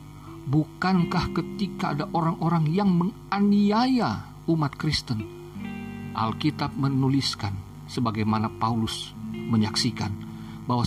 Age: 50-69